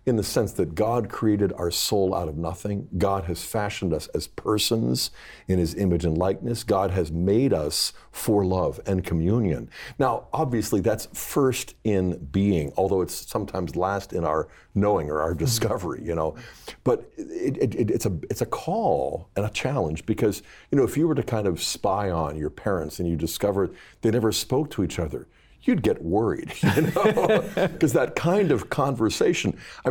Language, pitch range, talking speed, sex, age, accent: English, 90-120 Hz, 185 wpm, male, 50-69, American